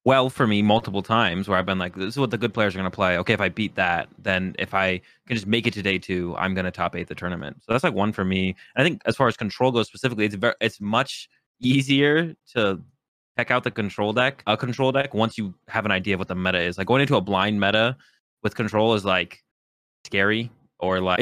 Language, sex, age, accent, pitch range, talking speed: English, male, 20-39, American, 95-115 Hz, 255 wpm